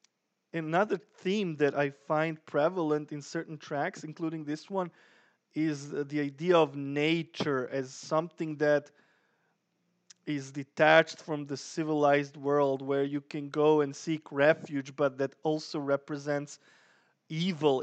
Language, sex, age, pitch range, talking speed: English, male, 20-39, 145-160 Hz, 130 wpm